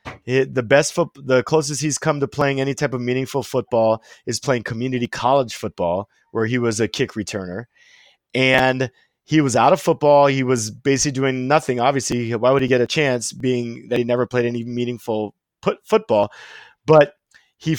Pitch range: 120-150 Hz